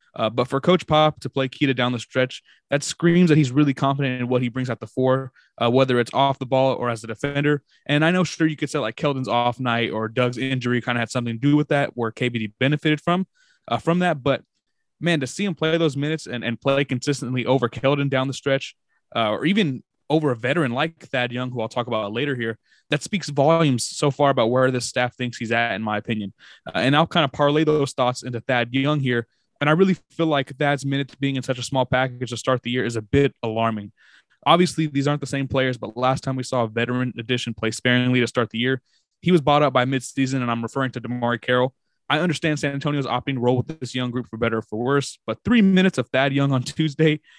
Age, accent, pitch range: 20-39, American, 120-145 Hz